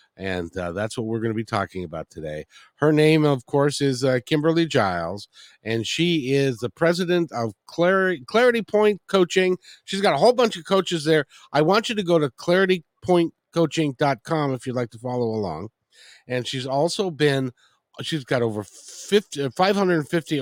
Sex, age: male, 50-69